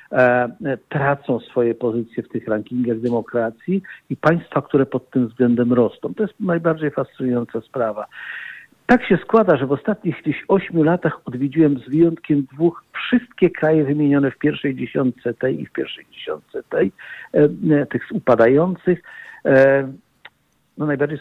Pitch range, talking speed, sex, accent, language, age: 115-150 Hz, 130 wpm, male, native, Polish, 50-69